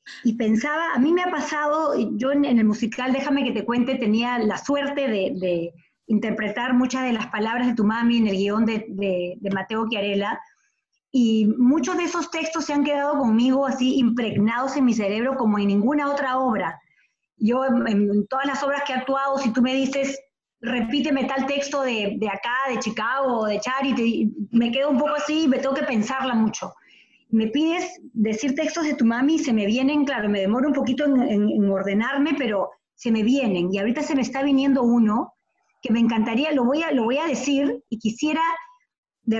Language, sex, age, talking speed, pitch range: Spanish, female, 30-49, 200 wpm, 220-280 Hz